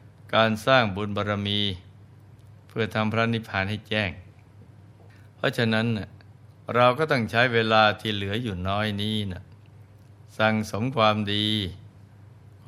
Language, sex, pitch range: Thai, male, 105-115 Hz